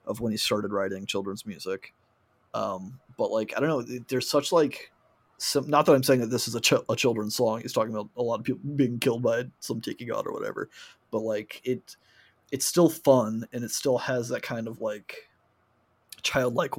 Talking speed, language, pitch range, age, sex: 210 wpm, English, 110-130 Hz, 20-39, male